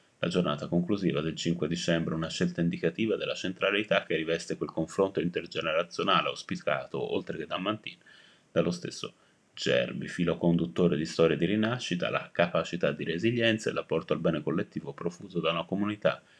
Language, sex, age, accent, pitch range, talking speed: Italian, male, 30-49, native, 80-100 Hz, 155 wpm